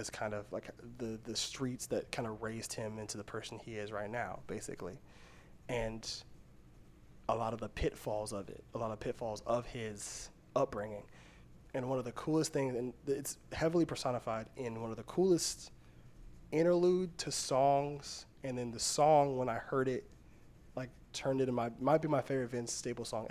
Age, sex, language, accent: 20-39, male, English, American